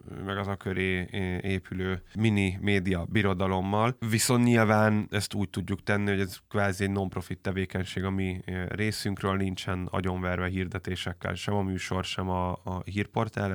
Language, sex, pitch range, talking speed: Hungarian, male, 95-110 Hz, 140 wpm